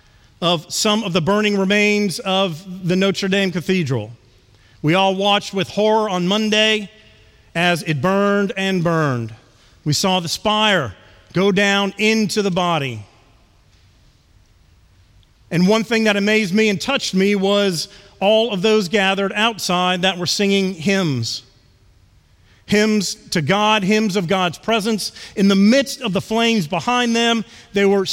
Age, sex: 40-59, male